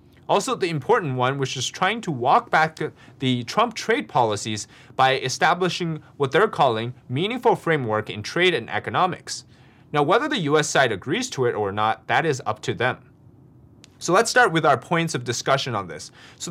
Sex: male